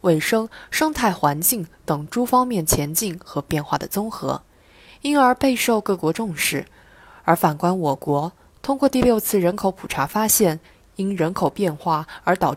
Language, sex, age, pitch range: Chinese, female, 20-39, 160-225 Hz